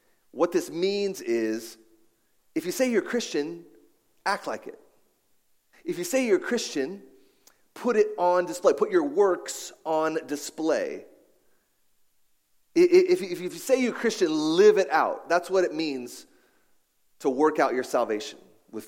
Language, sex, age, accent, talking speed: English, male, 30-49, American, 140 wpm